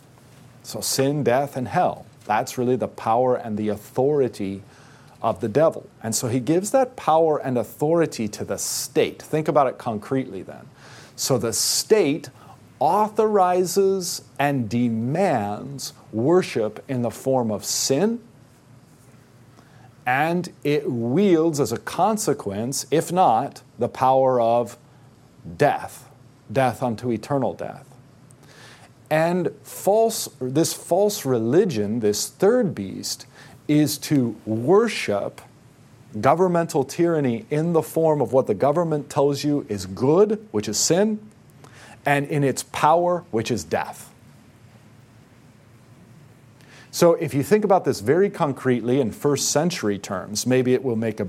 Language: English